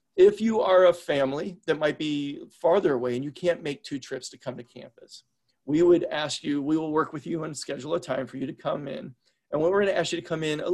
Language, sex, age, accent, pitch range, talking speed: English, male, 40-59, American, 135-165 Hz, 270 wpm